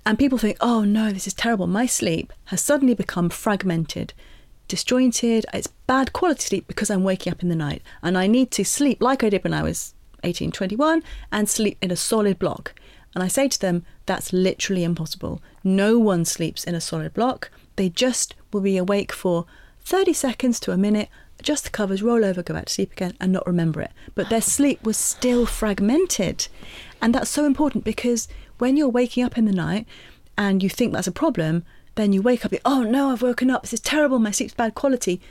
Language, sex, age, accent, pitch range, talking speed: English, female, 30-49, British, 185-245 Hz, 210 wpm